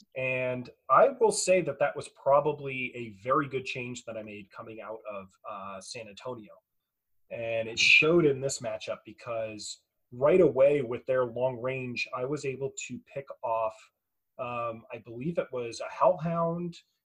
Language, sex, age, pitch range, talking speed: English, male, 30-49, 120-155 Hz, 165 wpm